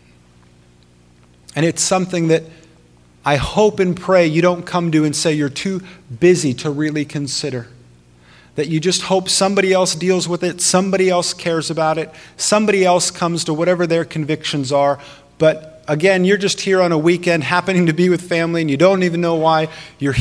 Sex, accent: male, American